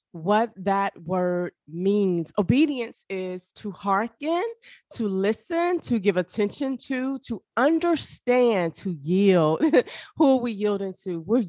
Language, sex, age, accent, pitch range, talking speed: English, female, 30-49, American, 190-260 Hz, 125 wpm